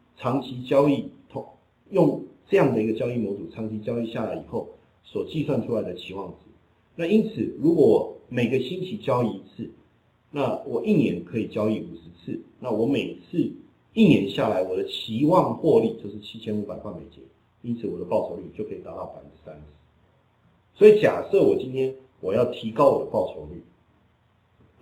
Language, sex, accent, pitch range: Chinese, male, native, 110-140 Hz